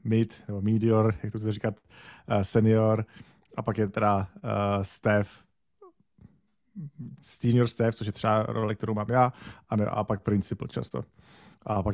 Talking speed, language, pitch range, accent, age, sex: 150 wpm, Czech, 105-115 Hz, native, 40-59, male